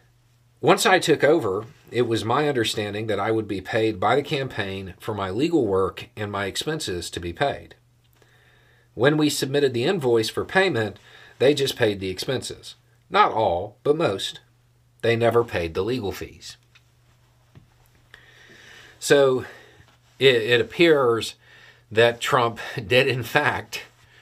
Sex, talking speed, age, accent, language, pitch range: male, 140 wpm, 40-59, American, English, 95-120 Hz